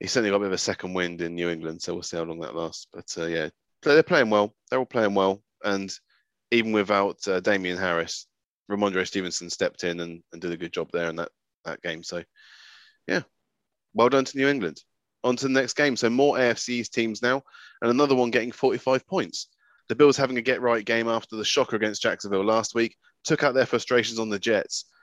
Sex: male